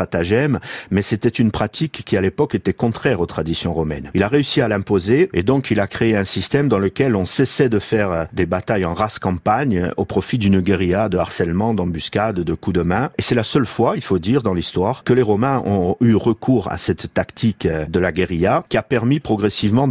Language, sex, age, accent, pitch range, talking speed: French, male, 50-69, French, 90-115 Hz, 215 wpm